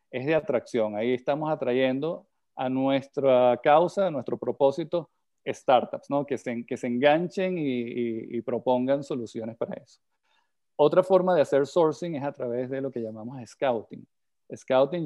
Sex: male